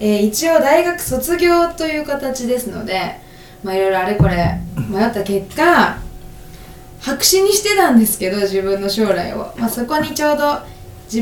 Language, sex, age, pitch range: Japanese, female, 20-39, 185-235 Hz